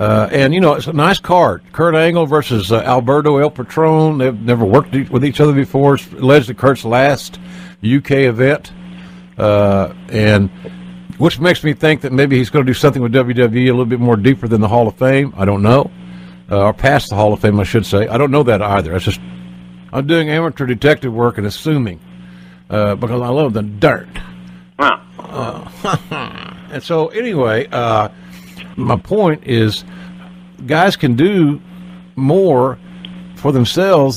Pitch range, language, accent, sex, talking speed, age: 115-165 Hz, English, American, male, 175 wpm, 60-79